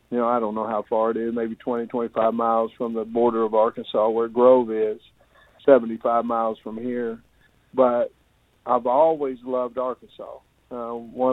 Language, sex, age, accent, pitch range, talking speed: English, male, 50-69, American, 120-130 Hz, 170 wpm